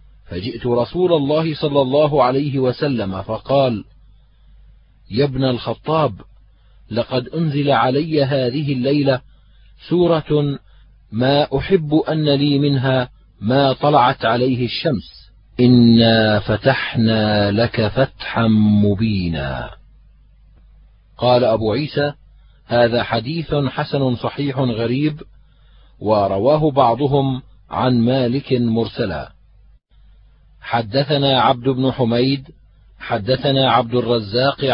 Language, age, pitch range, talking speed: Arabic, 40-59, 115-140 Hz, 90 wpm